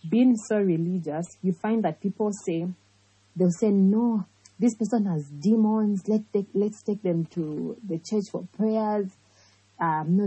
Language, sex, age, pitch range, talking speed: English, female, 20-39, 165-210 Hz, 160 wpm